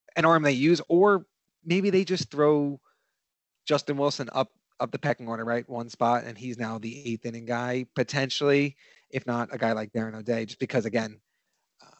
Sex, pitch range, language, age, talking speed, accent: male, 115-140 Hz, English, 30-49, 185 wpm, American